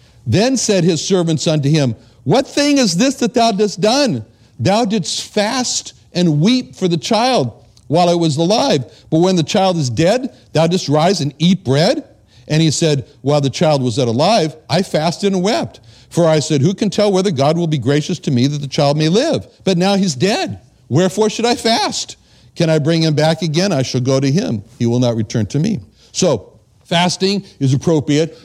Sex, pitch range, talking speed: male, 135-195 Hz, 205 wpm